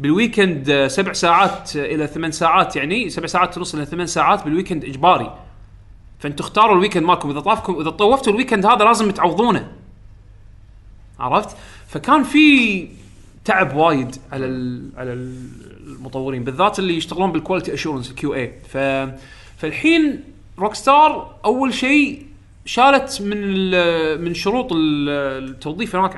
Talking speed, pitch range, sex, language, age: 125 wpm, 135-195 Hz, male, Arabic, 30-49